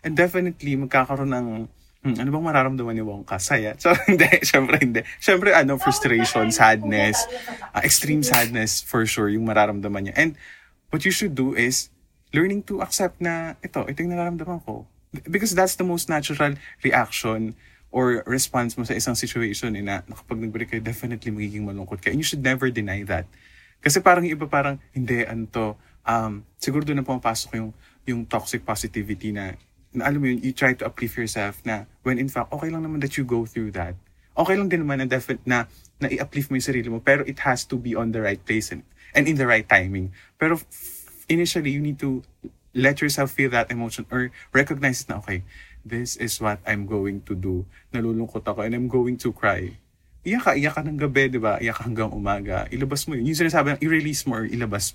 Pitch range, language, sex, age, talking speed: 110-140 Hz, Filipino, male, 20-39, 195 wpm